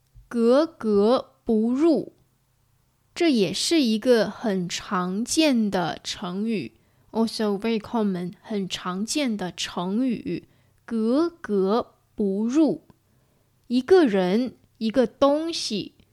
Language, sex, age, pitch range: English, female, 20-39, 190-255 Hz